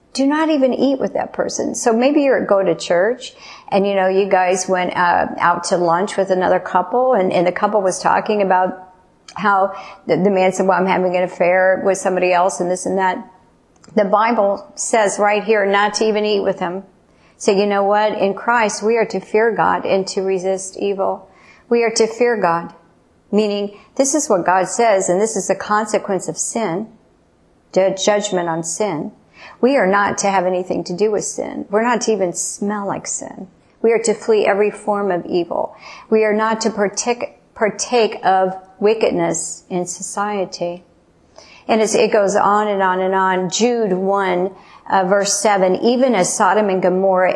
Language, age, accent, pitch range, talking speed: English, 50-69, American, 185-210 Hz, 195 wpm